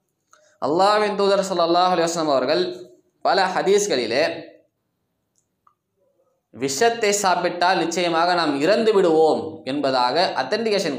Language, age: Tamil, 20-39